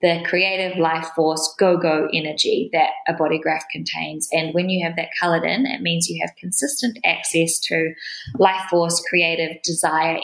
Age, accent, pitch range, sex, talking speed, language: 20-39, Australian, 160-185 Hz, female, 170 wpm, English